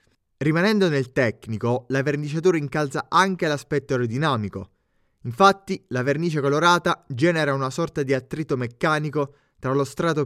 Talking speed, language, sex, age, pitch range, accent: 130 wpm, Italian, male, 20-39, 120-160 Hz, native